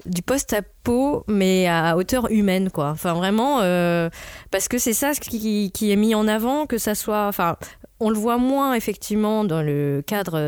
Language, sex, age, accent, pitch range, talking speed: French, female, 20-39, French, 175-220 Hz, 200 wpm